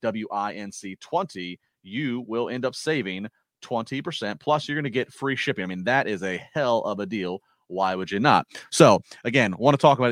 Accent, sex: American, male